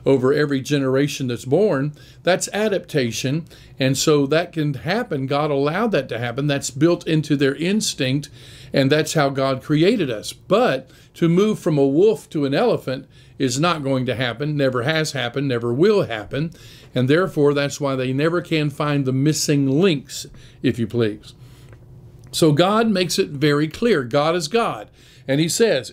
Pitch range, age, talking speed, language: 135-180 Hz, 50-69, 170 wpm, English